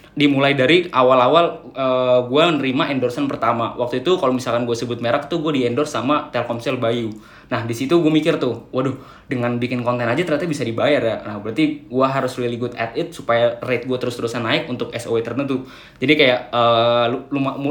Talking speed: 190 wpm